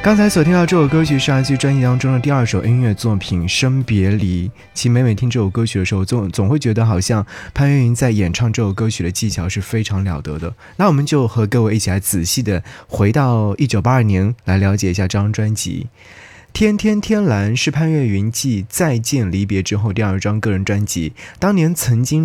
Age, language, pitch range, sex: 20-39, Chinese, 100-135 Hz, male